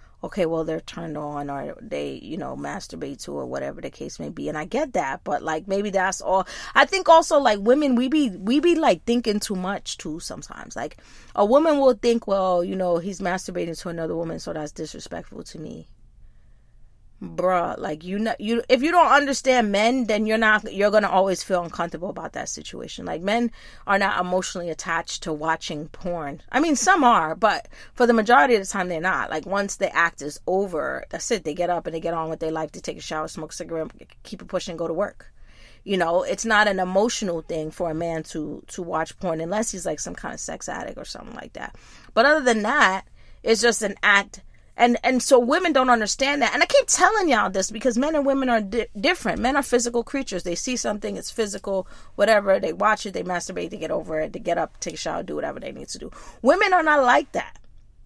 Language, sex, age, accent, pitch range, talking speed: English, female, 30-49, American, 170-240 Hz, 235 wpm